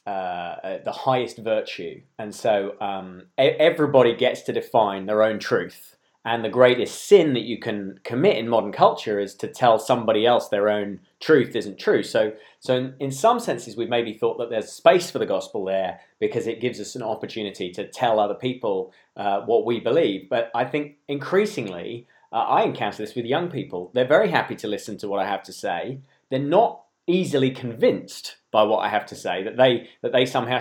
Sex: male